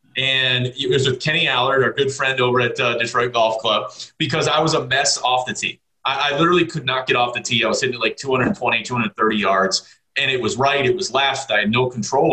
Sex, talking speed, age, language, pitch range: male, 245 wpm, 30-49, English, 115-140 Hz